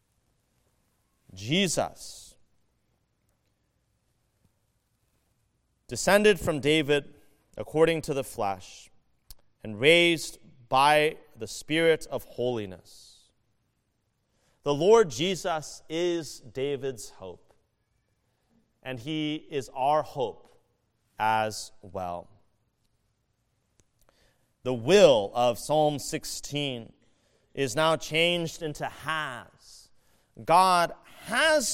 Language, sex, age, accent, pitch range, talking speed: English, male, 30-49, American, 115-155 Hz, 75 wpm